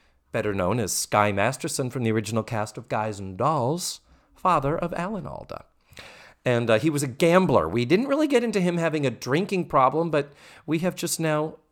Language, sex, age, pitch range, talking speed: English, male, 40-59, 100-160 Hz, 195 wpm